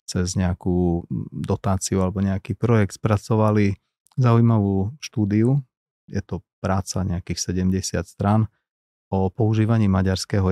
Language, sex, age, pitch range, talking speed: Slovak, male, 30-49, 95-110 Hz, 105 wpm